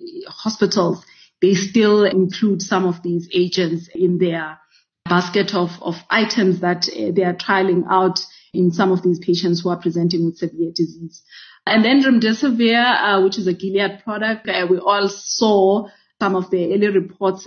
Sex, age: female, 30-49